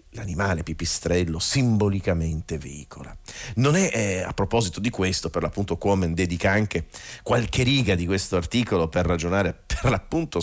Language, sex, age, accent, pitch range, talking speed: Italian, male, 40-59, native, 85-110 Hz, 145 wpm